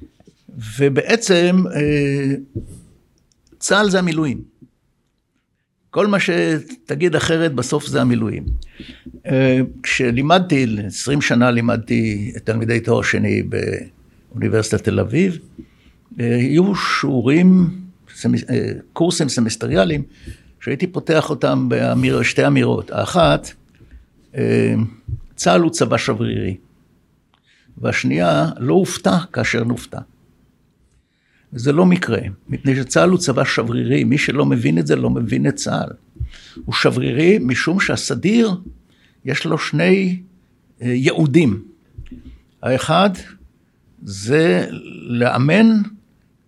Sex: male